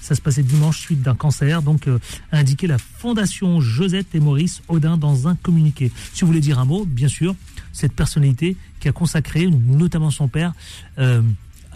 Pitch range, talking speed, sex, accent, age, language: 125-170 Hz, 190 wpm, male, French, 30-49, French